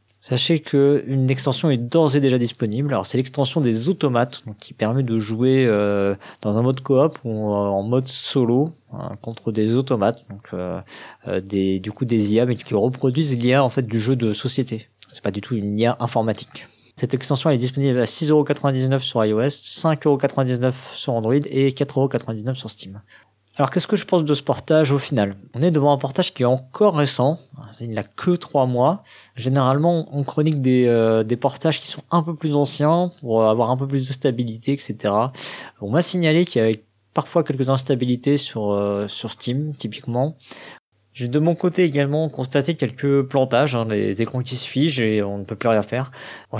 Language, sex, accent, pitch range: French, male, French, 110-140 Hz